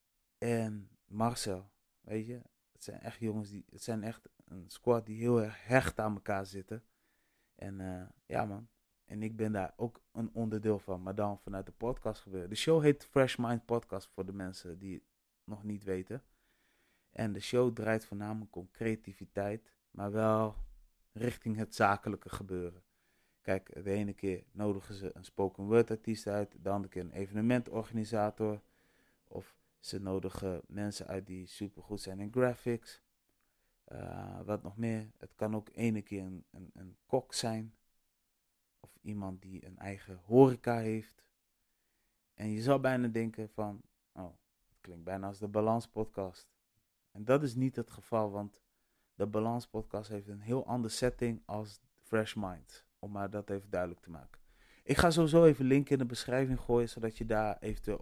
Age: 20-39